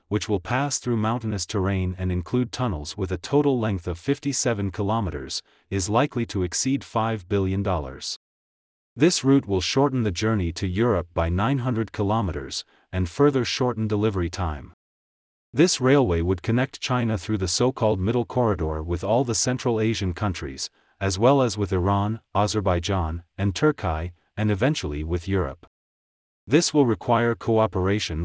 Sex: male